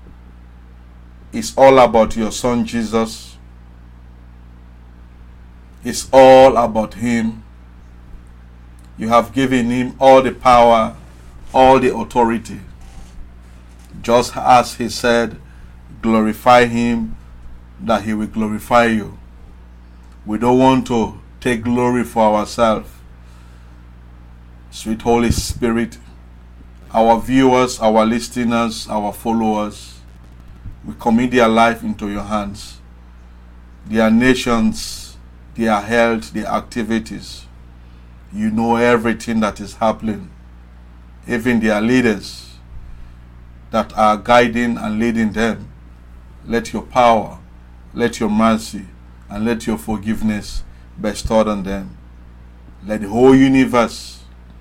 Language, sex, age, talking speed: English, male, 50-69, 100 wpm